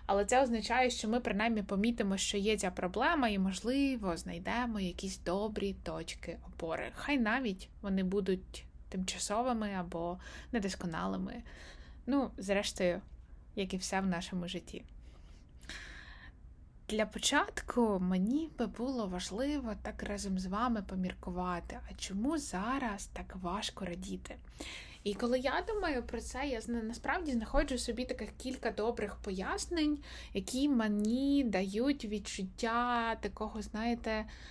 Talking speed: 120 wpm